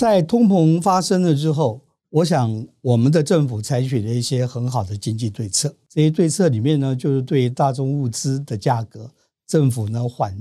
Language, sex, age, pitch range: Chinese, male, 50-69, 120-150 Hz